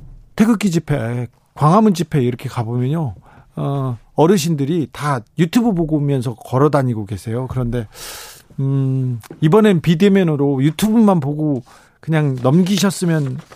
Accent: native